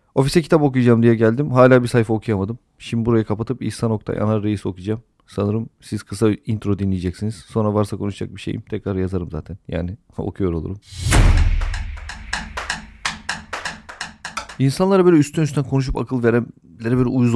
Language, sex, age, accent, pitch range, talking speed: Turkish, male, 40-59, native, 100-135 Hz, 145 wpm